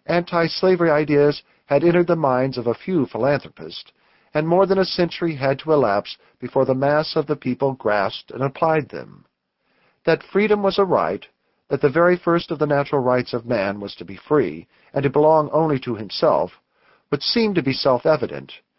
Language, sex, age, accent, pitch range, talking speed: English, male, 50-69, American, 125-160 Hz, 185 wpm